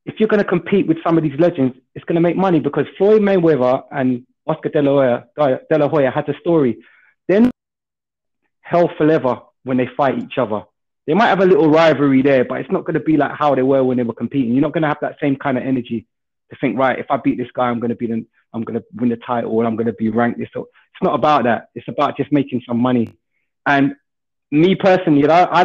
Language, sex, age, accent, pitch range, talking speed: English, male, 20-39, British, 135-190 Hz, 250 wpm